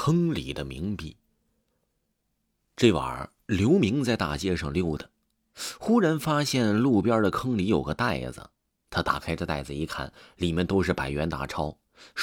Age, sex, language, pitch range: 30-49, male, Chinese, 75-115 Hz